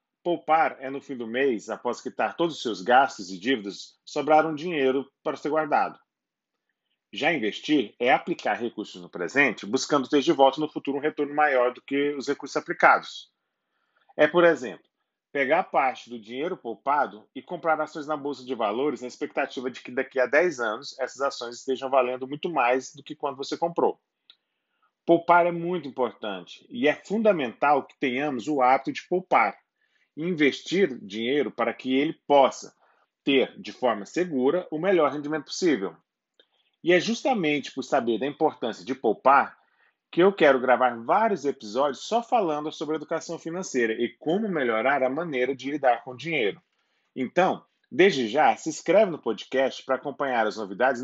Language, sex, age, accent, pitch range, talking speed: Portuguese, male, 40-59, Brazilian, 125-160 Hz, 170 wpm